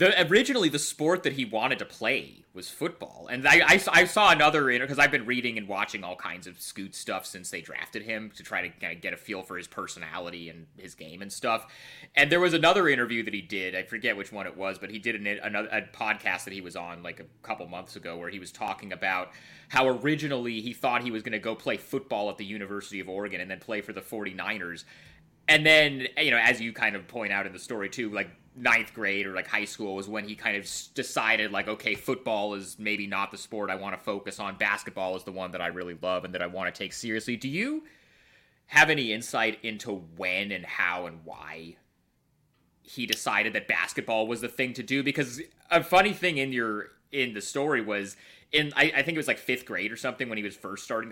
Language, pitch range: English, 95-130 Hz